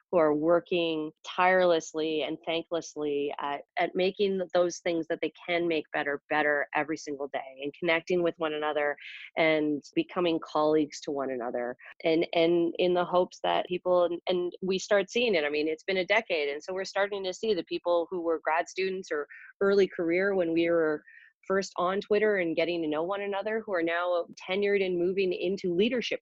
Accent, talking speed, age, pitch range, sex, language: American, 195 wpm, 30-49, 155-185 Hz, female, English